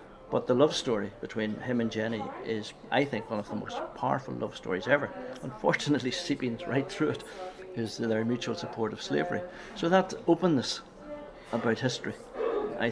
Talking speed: 165 wpm